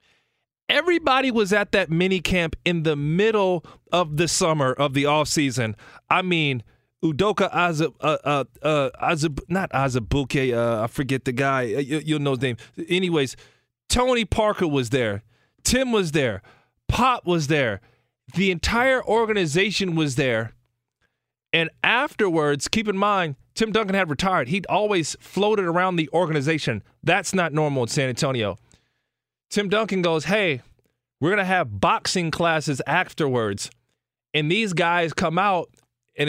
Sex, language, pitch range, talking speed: male, English, 140-190 Hz, 145 wpm